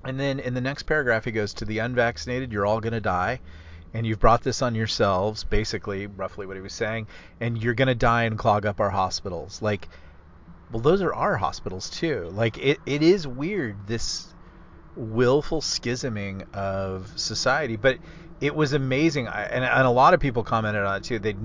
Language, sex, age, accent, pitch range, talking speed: English, male, 30-49, American, 95-120 Hz, 195 wpm